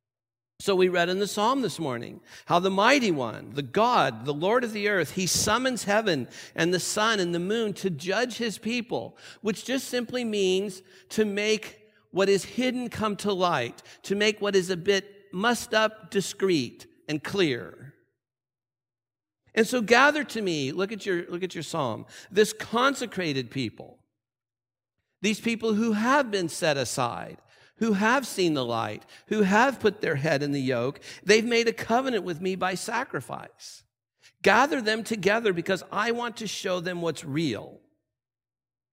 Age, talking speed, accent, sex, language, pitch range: 50-69, 170 wpm, American, male, English, 135-210 Hz